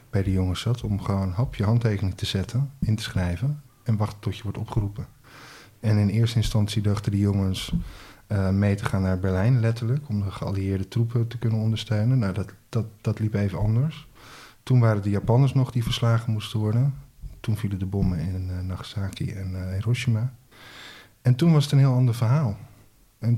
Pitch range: 100-120 Hz